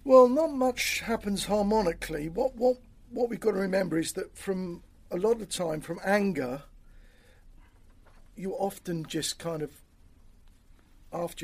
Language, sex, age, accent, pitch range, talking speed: English, male, 50-69, British, 120-195 Hz, 145 wpm